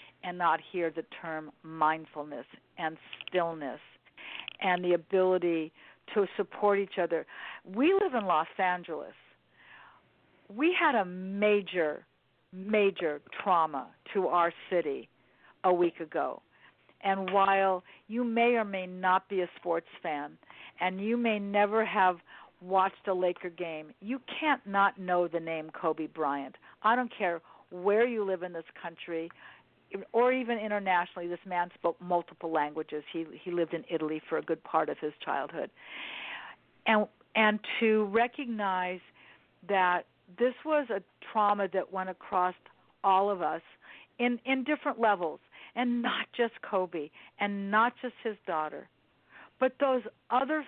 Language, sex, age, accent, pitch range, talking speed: English, female, 50-69, American, 175-225 Hz, 140 wpm